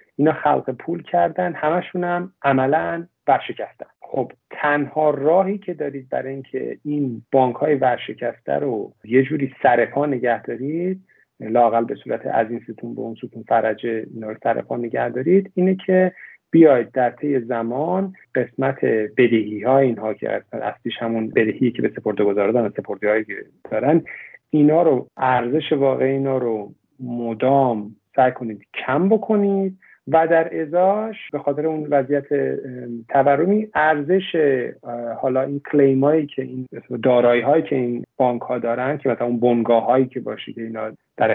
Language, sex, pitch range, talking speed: Persian, male, 120-155 Hz, 150 wpm